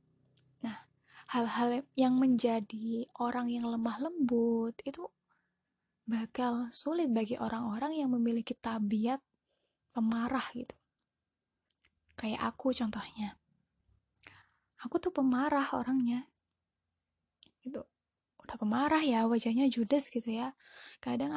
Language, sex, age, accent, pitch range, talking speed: Indonesian, female, 20-39, native, 230-275 Hz, 90 wpm